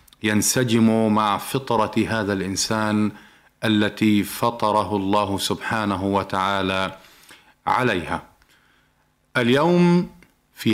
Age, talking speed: 40-59, 75 wpm